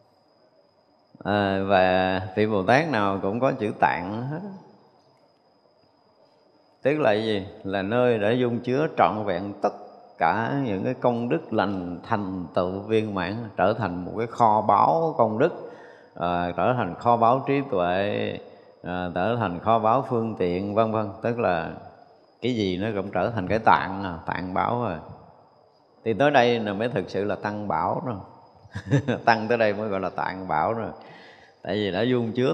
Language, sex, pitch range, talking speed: Vietnamese, male, 95-120 Hz, 175 wpm